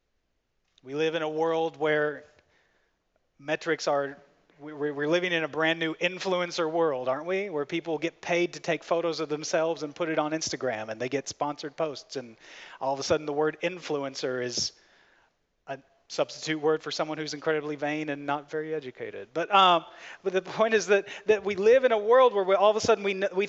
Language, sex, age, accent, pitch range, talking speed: English, male, 30-49, American, 150-190 Hz, 200 wpm